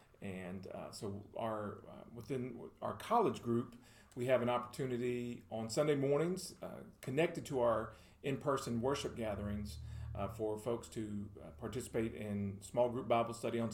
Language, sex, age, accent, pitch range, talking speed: English, male, 40-59, American, 105-130 Hz, 150 wpm